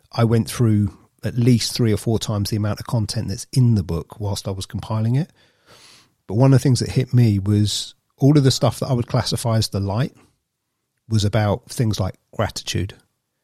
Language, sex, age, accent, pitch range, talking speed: English, male, 40-59, British, 105-125 Hz, 210 wpm